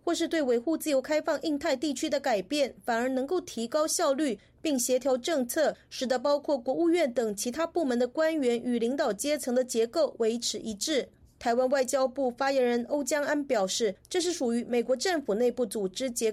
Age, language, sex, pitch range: 30-49, Chinese, female, 240-305 Hz